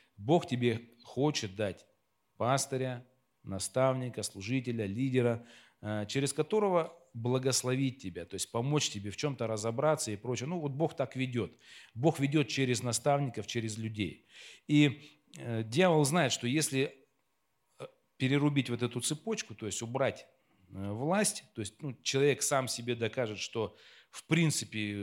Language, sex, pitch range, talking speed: Russian, male, 105-140 Hz, 130 wpm